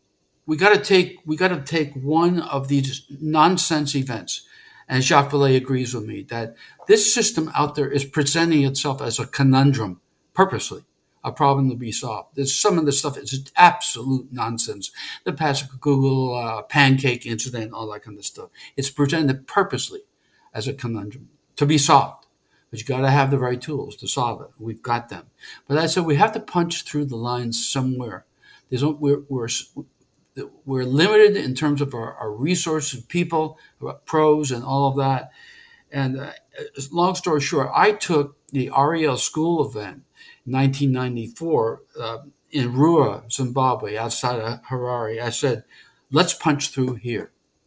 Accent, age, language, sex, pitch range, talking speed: American, 60-79, English, male, 125-155 Hz, 165 wpm